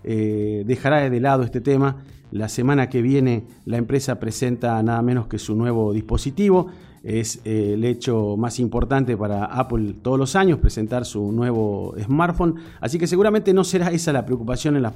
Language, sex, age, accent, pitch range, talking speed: Spanish, male, 40-59, Argentinian, 115-145 Hz, 175 wpm